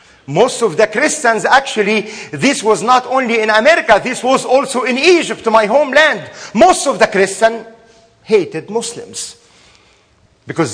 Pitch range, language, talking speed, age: 170-255 Hz, English, 140 wpm, 50-69